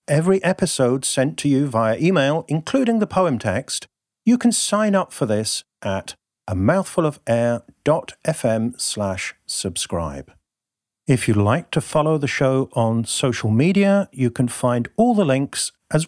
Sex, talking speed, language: male, 140 wpm, English